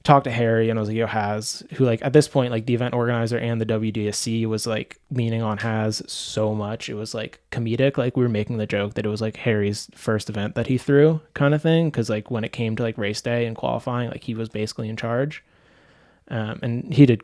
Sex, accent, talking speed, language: male, American, 250 wpm, English